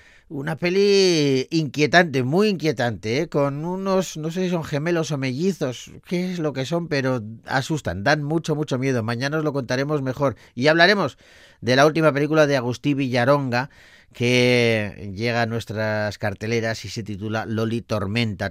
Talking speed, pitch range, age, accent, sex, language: 160 wpm, 115-150 Hz, 40-59, Spanish, male, Spanish